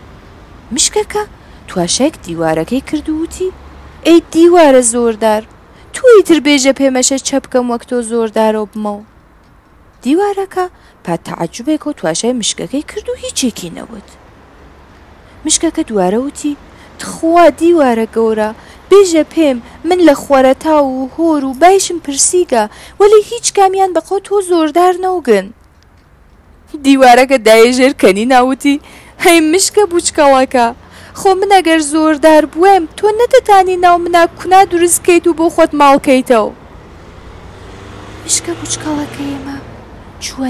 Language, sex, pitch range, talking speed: Persian, female, 205-345 Hz, 115 wpm